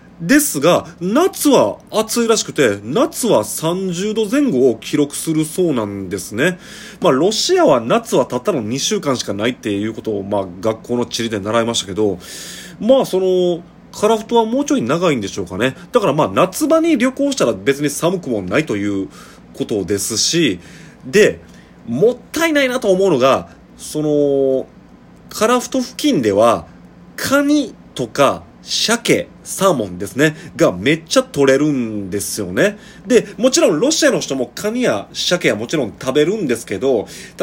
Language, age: Japanese, 30-49